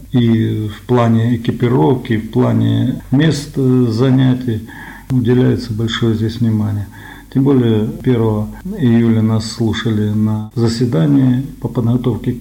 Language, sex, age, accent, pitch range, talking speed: Russian, male, 40-59, native, 110-125 Hz, 105 wpm